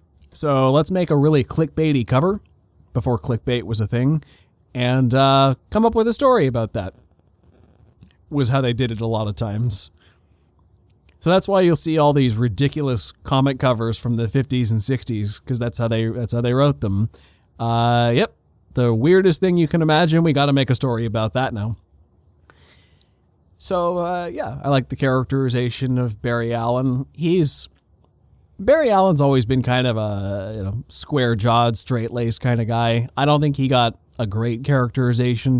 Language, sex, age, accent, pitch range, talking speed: English, male, 30-49, American, 110-140 Hz, 175 wpm